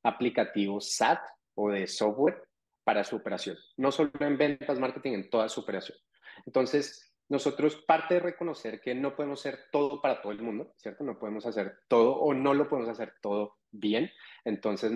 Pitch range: 105-135 Hz